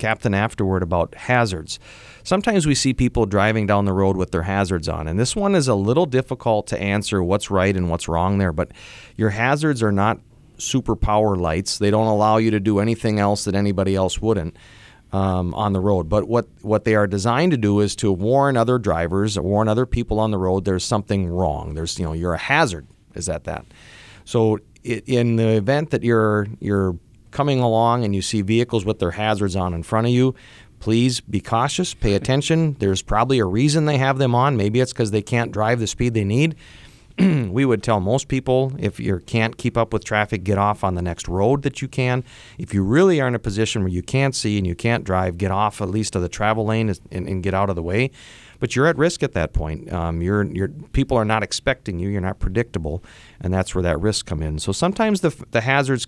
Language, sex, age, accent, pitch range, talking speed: English, male, 30-49, American, 95-125 Hz, 225 wpm